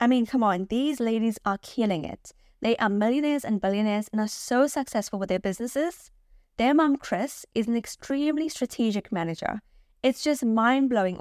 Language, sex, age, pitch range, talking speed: English, female, 10-29, 200-260 Hz, 175 wpm